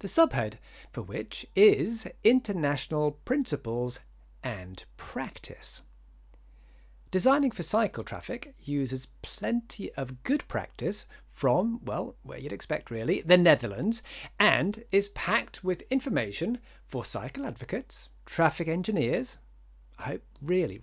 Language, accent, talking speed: English, British, 110 wpm